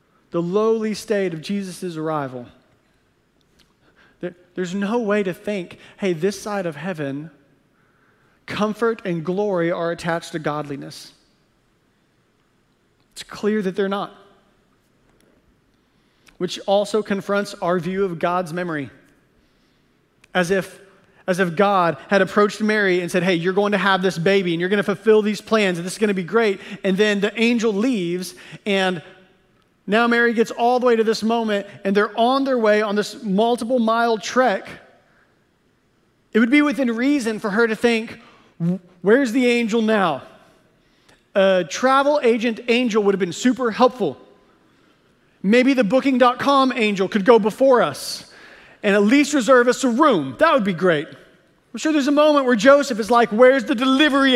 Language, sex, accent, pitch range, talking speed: English, male, American, 185-235 Hz, 160 wpm